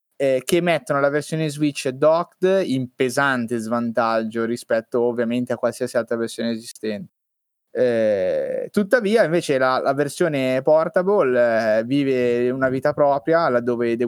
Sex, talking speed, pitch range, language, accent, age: male, 125 wpm, 120-145 Hz, Italian, native, 20-39